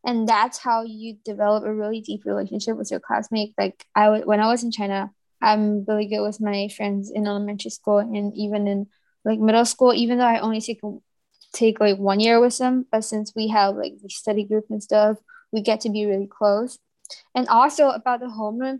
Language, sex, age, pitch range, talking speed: English, female, 20-39, 205-225 Hz, 215 wpm